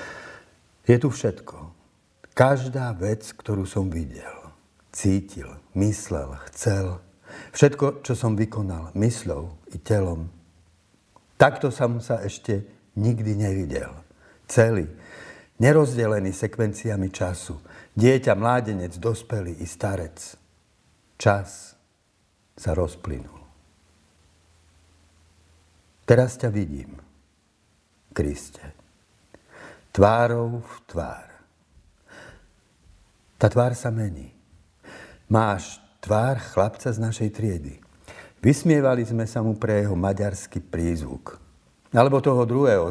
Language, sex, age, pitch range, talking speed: Slovak, male, 60-79, 85-110 Hz, 90 wpm